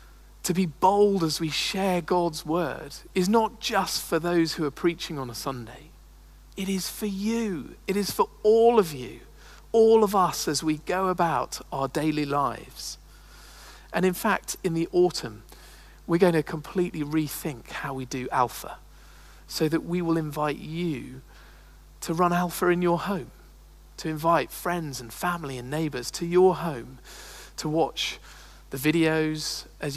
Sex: male